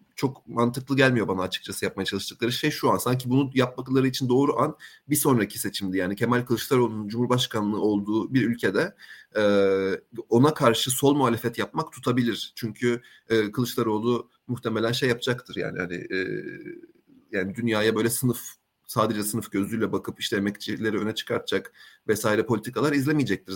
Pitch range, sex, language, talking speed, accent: 110-140 Hz, male, Turkish, 140 wpm, native